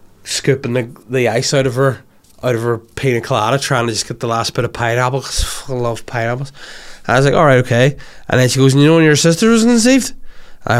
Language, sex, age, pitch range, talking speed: English, male, 20-39, 125-165 Hz, 245 wpm